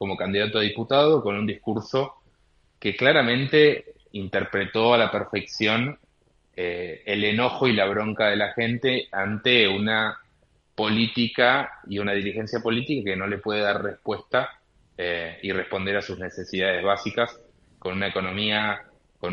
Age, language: 20-39, Spanish